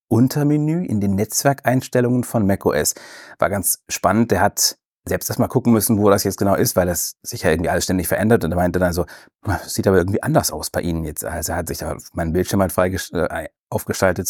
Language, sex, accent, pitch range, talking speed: German, male, German, 95-125 Hz, 225 wpm